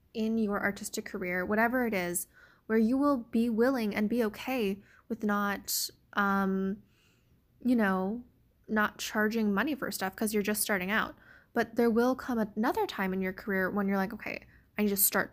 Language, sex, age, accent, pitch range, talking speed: English, female, 10-29, American, 200-240 Hz, 185 wpm